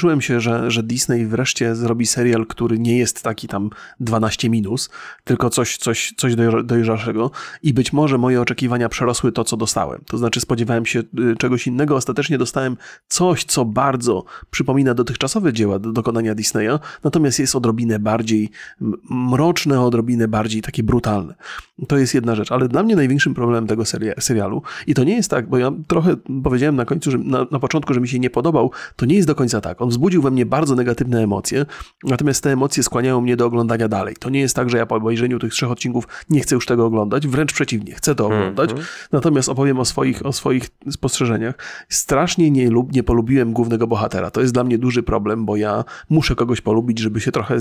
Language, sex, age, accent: Polish, male, 30-49, native